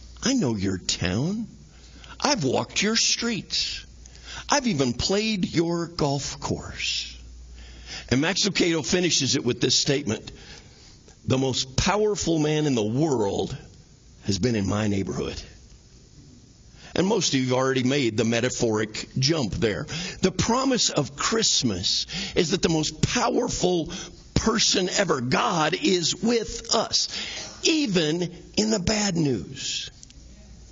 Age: 50-69